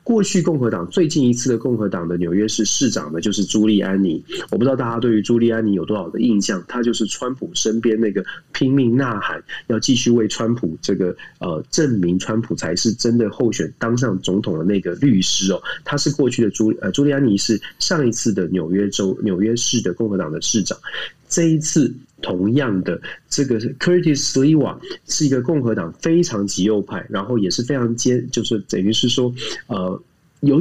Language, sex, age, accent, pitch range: Chinese, male, 20-39, native, 105-145 Hz